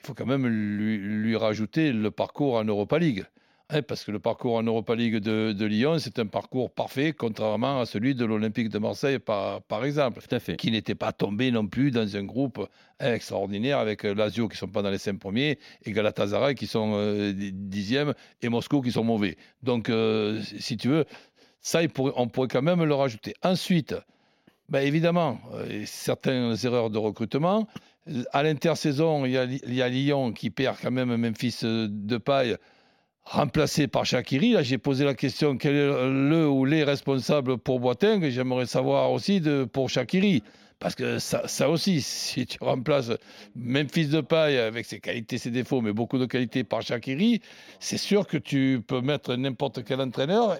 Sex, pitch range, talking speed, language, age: male, 115-145 Hz, 185 wpm, French, 60-79